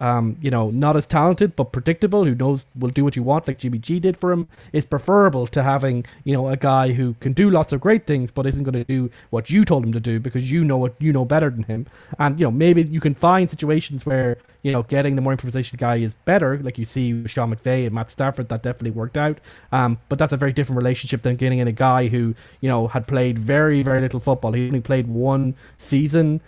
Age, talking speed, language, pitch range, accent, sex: 20-39, 255 wpm, English, 125-150 Hz, Irish, male